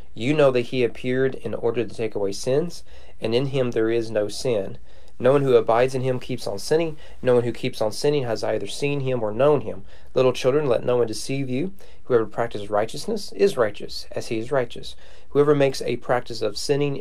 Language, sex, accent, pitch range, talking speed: English, male, American, 110-135 Hz, 220 wpm